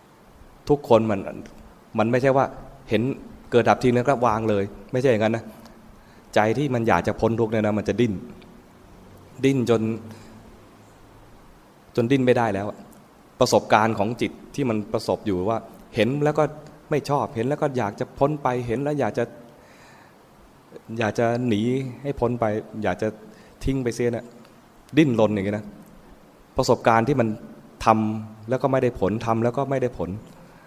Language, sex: English, male